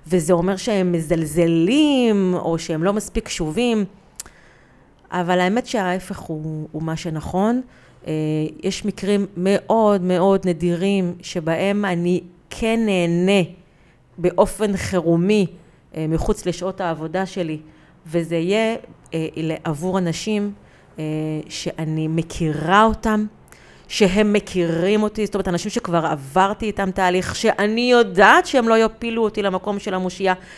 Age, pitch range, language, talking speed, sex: 30-49, 170-210 Hz, Hebrew, 110 wpm, female